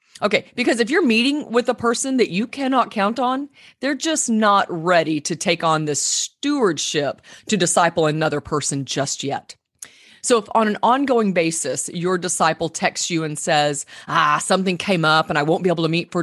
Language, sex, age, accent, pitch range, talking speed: English, female, 30-49, American, 155-220 Hz, 190 wpm